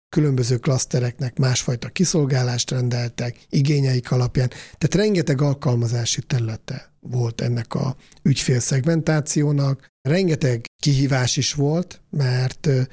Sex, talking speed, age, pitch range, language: male, 95 wpm, 50-69, 125-150 Hz, Hungarian